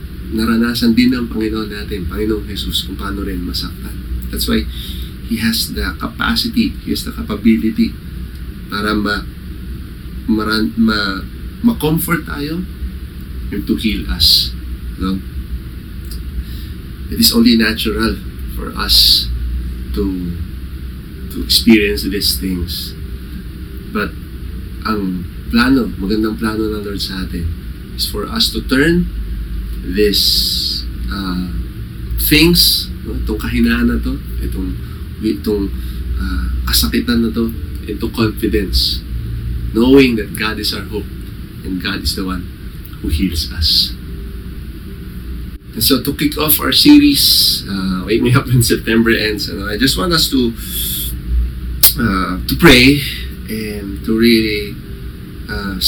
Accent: native